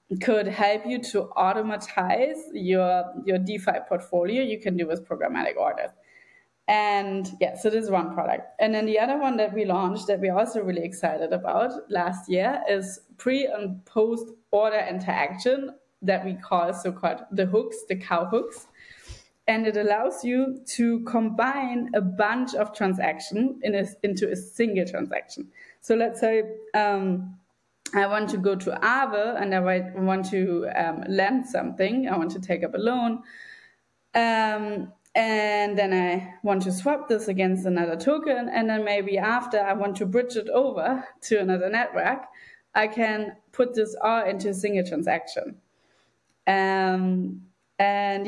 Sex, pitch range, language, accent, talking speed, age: female, 185-230 Hz, English, German, 160 wpm, 20-39